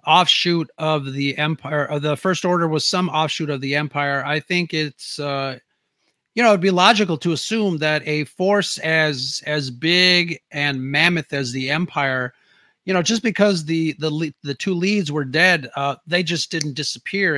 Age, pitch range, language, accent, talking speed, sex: 30-49, 140-175 Hz, English, American, 180 wpm, male